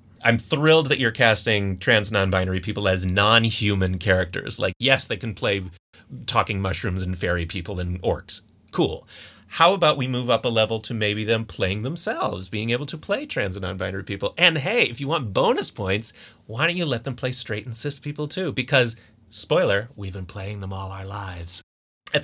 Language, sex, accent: English, male, American